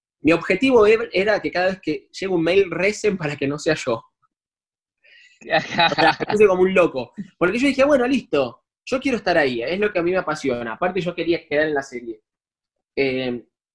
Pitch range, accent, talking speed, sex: 145-205 Hz, Argentinian, 190 wpm, male